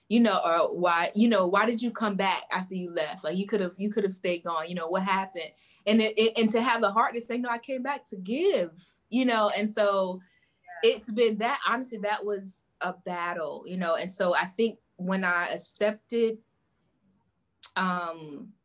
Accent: American